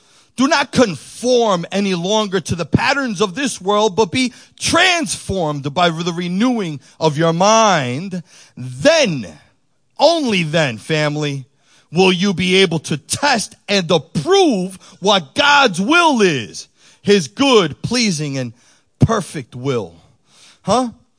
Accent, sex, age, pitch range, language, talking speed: American, male, 40-59, 160-230 Hz, English, 120 wpm